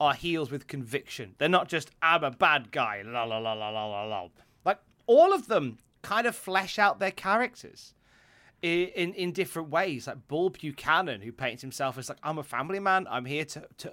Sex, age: male, 30-49